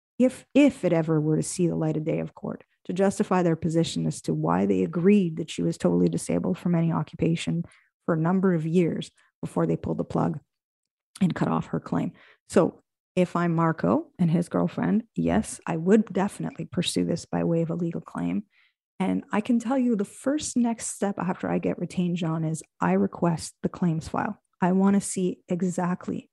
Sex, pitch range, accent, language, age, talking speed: female, 165-195 Hz, American, English, 30-49, 205 wpm